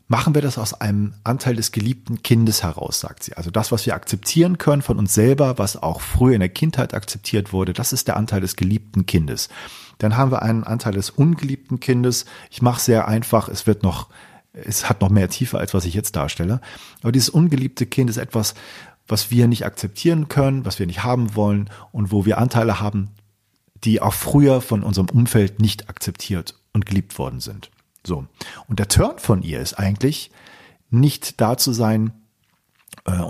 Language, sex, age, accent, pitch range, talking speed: German, male, 40-59, German, 100-125 Hz, 195 wpm